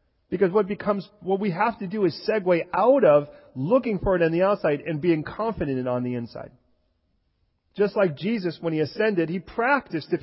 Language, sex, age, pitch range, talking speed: English, male, 40-59, 165-230 Hz, 205 wpm